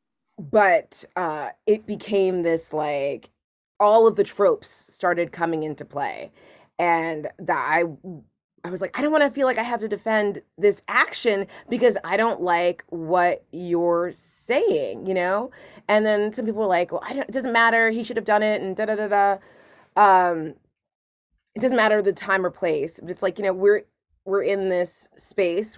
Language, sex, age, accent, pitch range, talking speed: English, female, 30-49, American, 175-230 Hz, 185 wpm